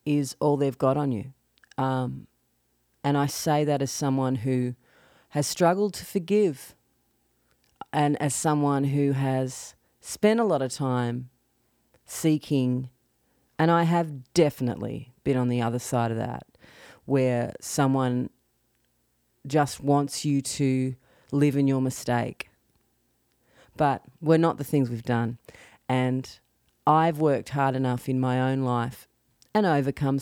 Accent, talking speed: Australian, 135 wpm